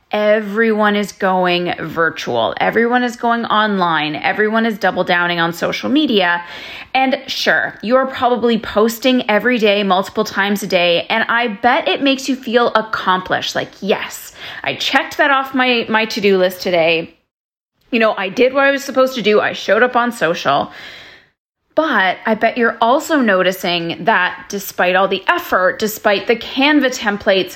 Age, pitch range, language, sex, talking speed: 30-49, 190-235 Hz, English, female, 165 wpm